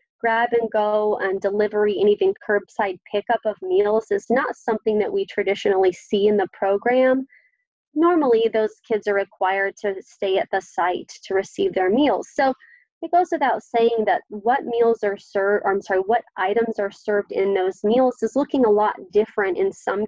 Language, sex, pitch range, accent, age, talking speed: English, female, 195-245 Hz, American, 20-39, 185 wpm